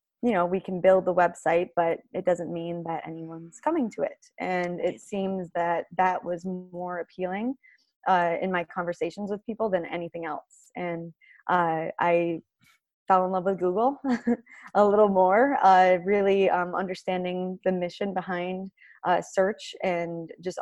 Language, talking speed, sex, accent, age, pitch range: English, 160 wpm, female, American, 20-39, 175-210 Hz